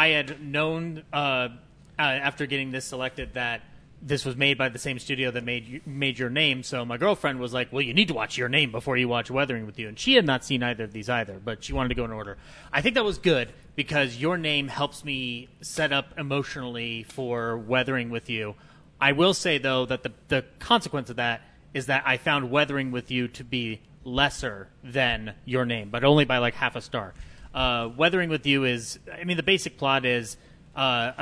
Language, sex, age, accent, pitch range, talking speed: English, male, 30-49, American, 120-145 Hz, 220 wpm